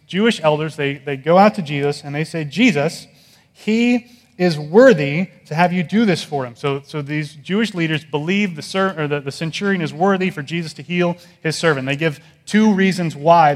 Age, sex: 30-49, male